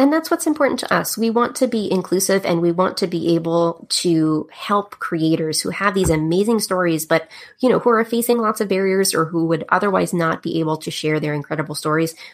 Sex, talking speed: female, 225 wpm